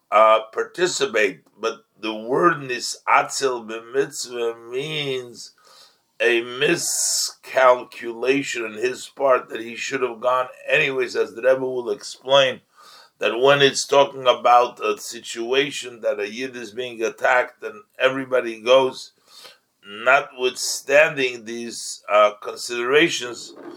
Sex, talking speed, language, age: male, 110 wpm, English, 50-69